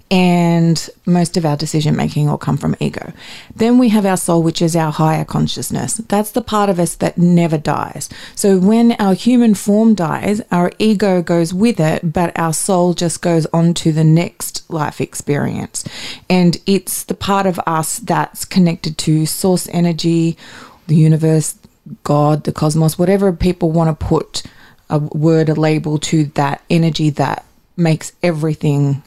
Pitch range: 160-195 Hz